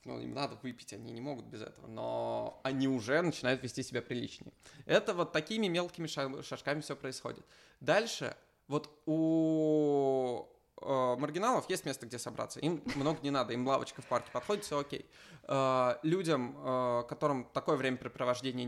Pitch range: 125-155 Hz